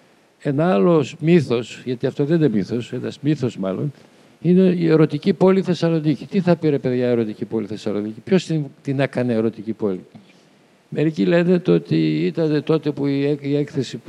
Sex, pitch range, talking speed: male, 120-165 Hz, 160 wpm